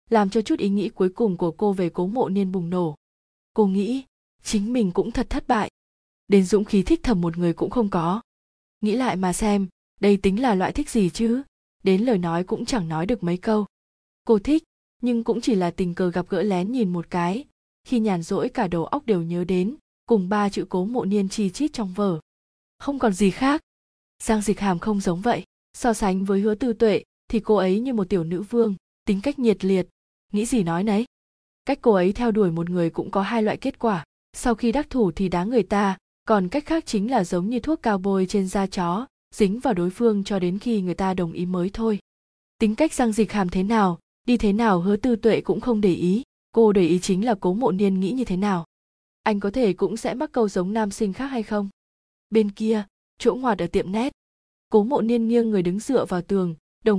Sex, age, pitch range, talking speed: female, 20-39, 185-230 Hz, 235 wpm